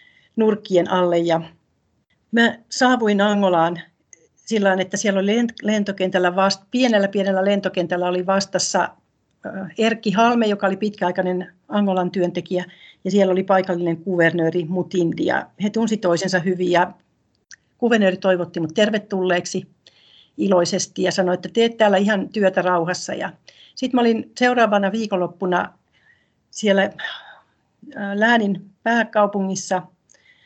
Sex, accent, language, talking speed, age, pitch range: female, native, Finnish, 115 wpm, 60-79, 180-215 Hz